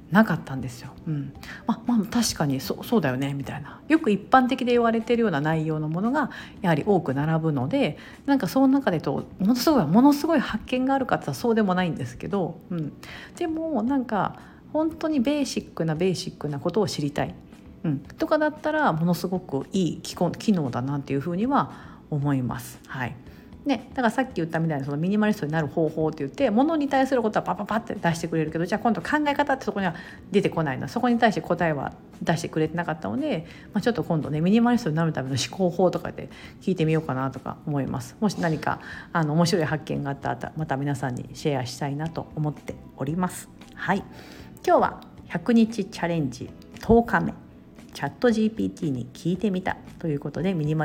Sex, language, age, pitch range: female, Japanese, 50-69, 150-225 Hz